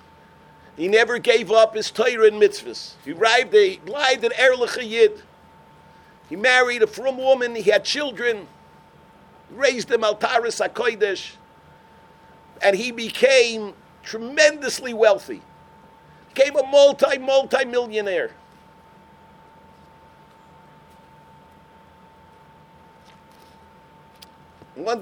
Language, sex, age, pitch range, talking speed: English, male, 50-69, 180-295 Hz, 90 wpm